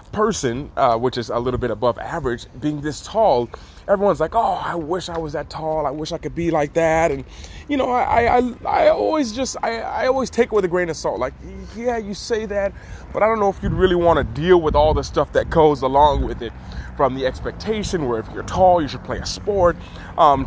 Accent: American